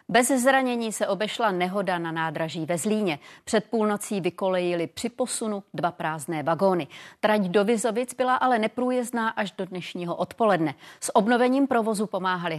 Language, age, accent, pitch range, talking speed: Czech, 30-49, native, 180-235 Hz, 150 wpm